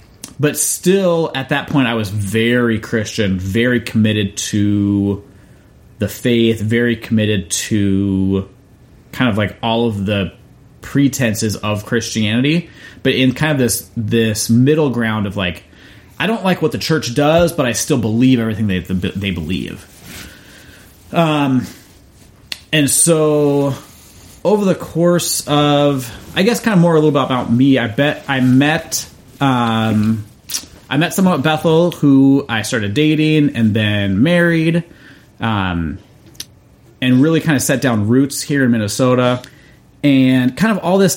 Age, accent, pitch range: 30-49, American, 105-145 Hz